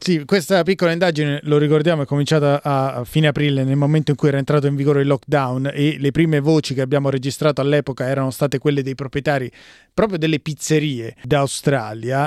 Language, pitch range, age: Italian, 140-160 Hz, 20-39